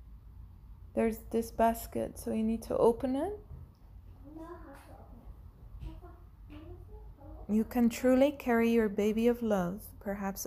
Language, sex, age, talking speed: English, female, 20-39, 105 wpm